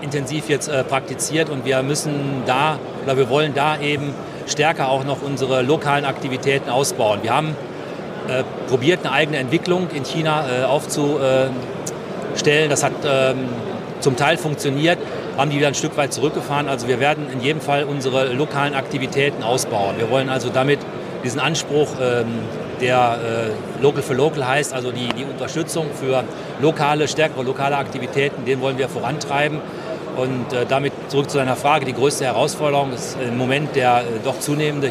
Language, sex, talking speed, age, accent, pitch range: German, male, 165 wpm, 40-59, German, 130-155 Hz